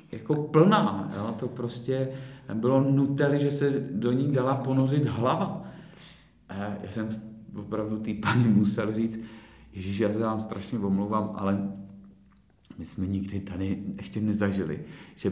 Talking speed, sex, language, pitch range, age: 135 wpm, male, Czech, 100-120 Hz, 40-59